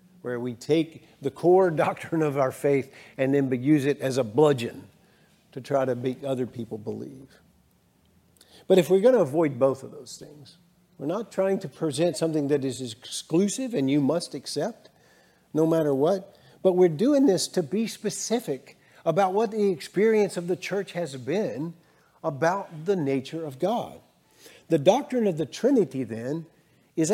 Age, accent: 50-69, American